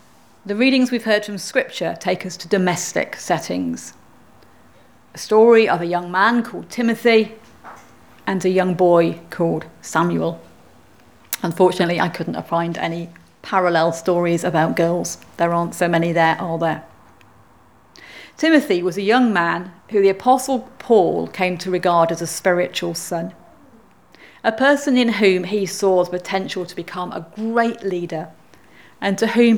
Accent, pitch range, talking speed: British, 175-225 Hz, 150 wpm